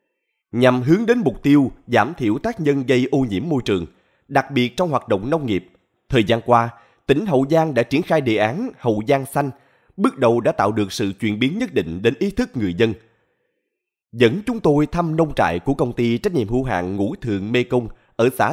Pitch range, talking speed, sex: 110-155 Hz, 225 wpm, male